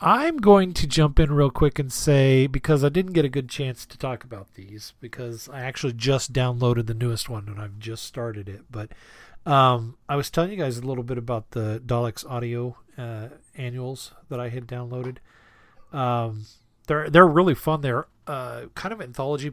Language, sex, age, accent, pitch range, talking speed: English, male, 40-59, American, 115-145 Hz, 195 wpm